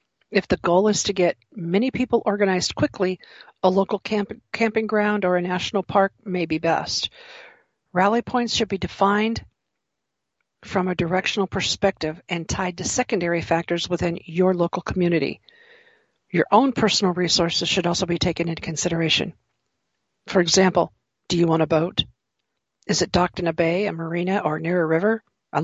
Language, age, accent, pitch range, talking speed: English, 50-69, American, 170-210 Hz, 160 wpm